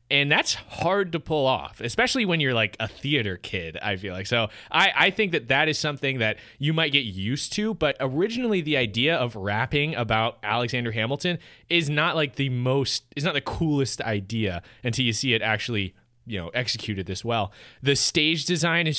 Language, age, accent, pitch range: English, 20-39, American, 110-150 Hz